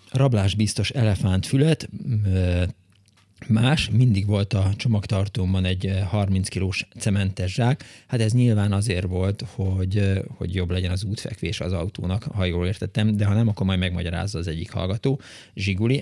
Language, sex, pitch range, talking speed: Hungarian, male, 95-115 Hz, 150 wpm